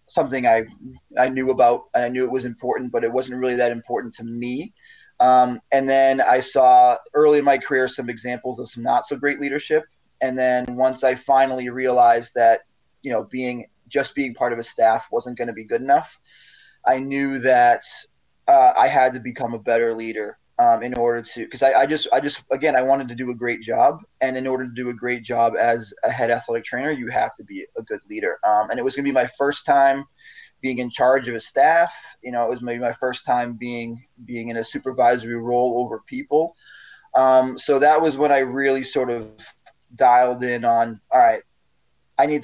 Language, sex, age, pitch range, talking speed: English, male, 20-39, 120-135 Hz, 220 wpm